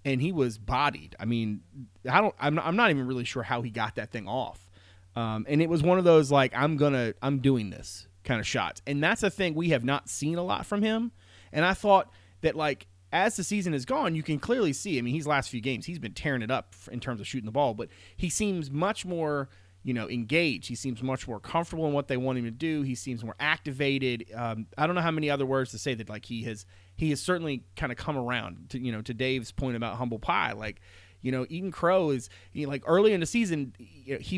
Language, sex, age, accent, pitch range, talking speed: English, male, 30-49, American, 115-150 Hz, 260 wpm